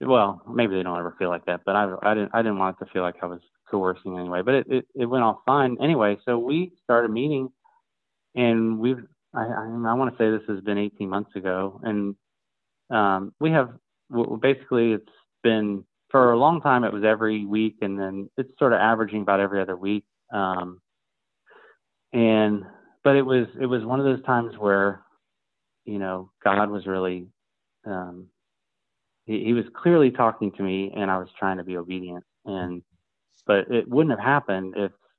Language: English